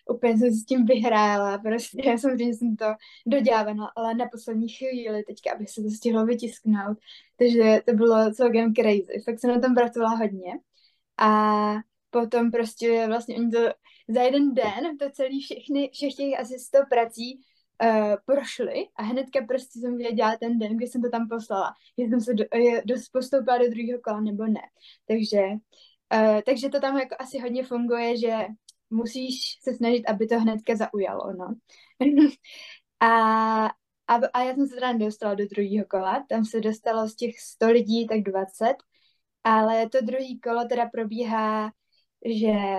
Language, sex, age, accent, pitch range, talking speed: Czech, female, 10-29, native, 220-250 Hz, 165 wpm